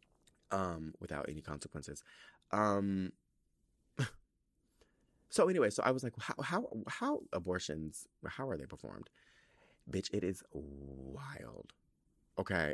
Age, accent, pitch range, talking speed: 20-39, American, 80-120 Hz, 115 wpm